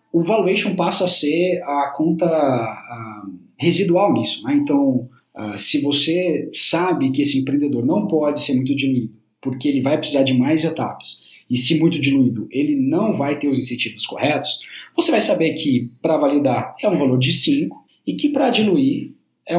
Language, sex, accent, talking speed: Portuguese, male, Brazilian, 170 wpm